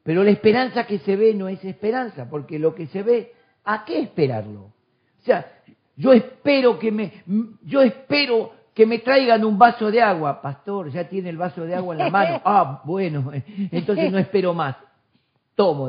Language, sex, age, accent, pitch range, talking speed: Spanish, male, 50-69, Argentinian, 140-210 Hz, 185 wpm